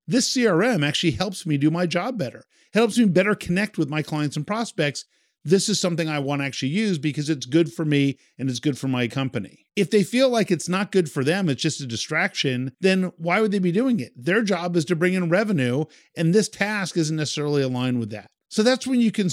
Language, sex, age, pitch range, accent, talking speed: English, male, 50-69, 140-190 Hz, American, 240 wpm